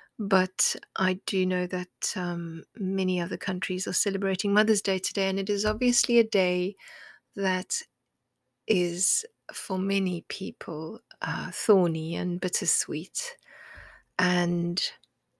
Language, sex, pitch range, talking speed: English, female, 175-215 Hz, 115 wpm